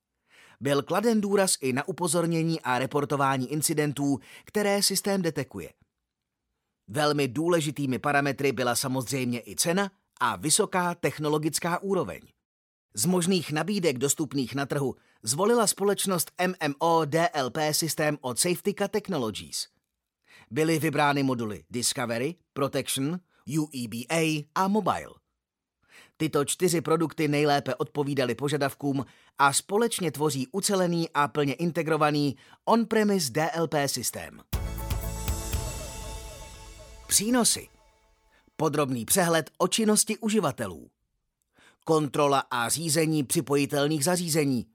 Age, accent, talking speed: 30-49, native, 95 wpm